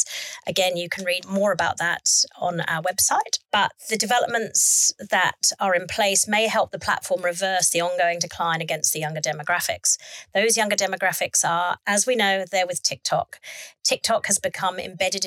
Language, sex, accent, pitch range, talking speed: English, female, British, 175-205 Hz, 170 wpm